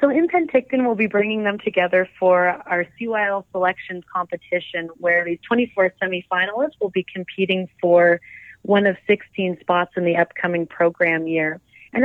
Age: 30-49